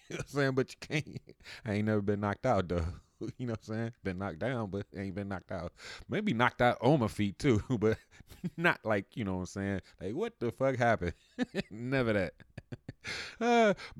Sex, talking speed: male, 220 wpm